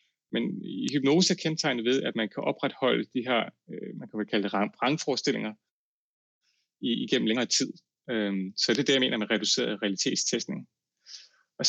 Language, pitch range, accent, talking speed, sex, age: Danish, 105-140 Hz, native, 165 wpm, male, 30-49